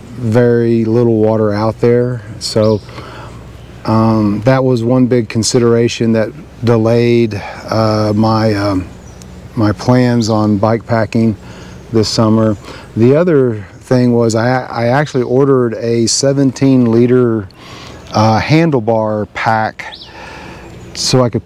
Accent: American